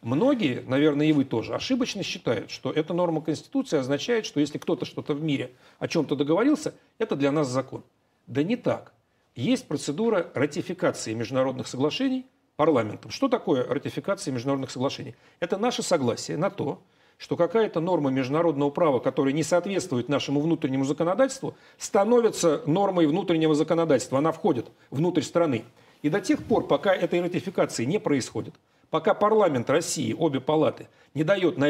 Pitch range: 145-205 Hz